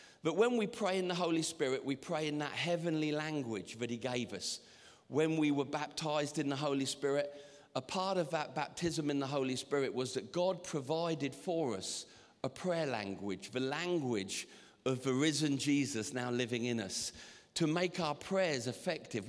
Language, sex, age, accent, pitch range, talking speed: English, male, 50-69, British, 125-165 Hz, 185 wpm